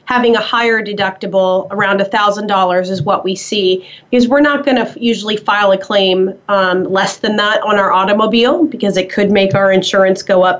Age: 30-49